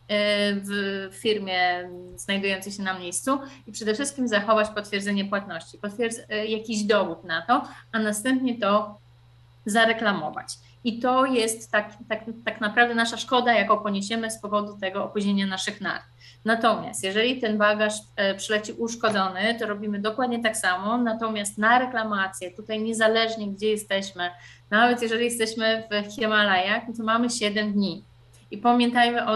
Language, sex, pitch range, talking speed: Polish, female, 195-230 Hz, 135 wpm